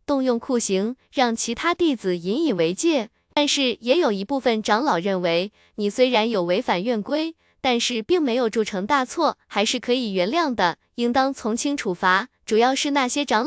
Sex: female